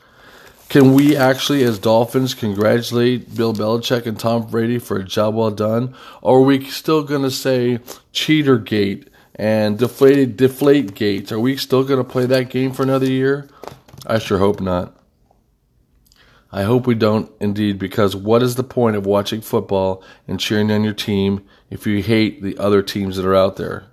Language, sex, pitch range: English, male, 100-125 Hz